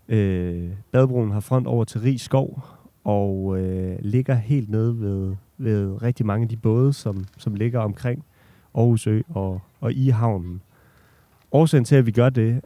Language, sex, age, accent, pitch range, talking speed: Danish, male, 30-49, native, 100-125 Hz, 155 wpm